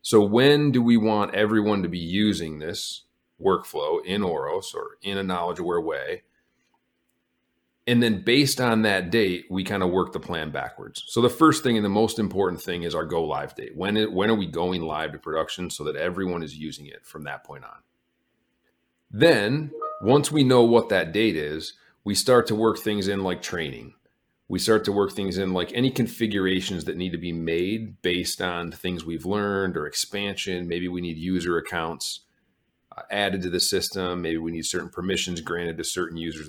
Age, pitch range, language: 40-59, 85-115 Hz, English